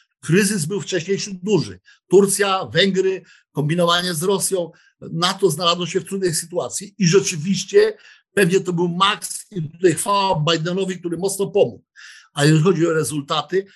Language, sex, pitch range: Polish, male, 155-190 Hz